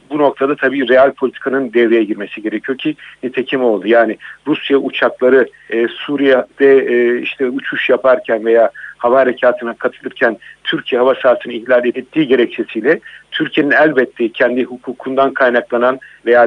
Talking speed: 130 wpm